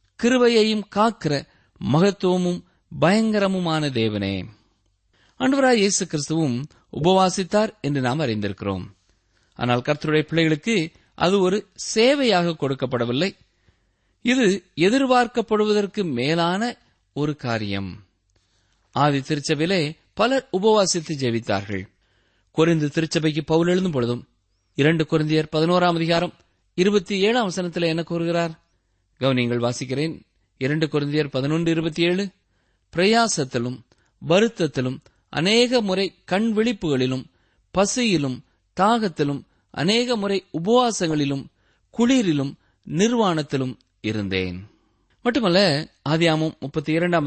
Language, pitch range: Tamil, 120-190 Hz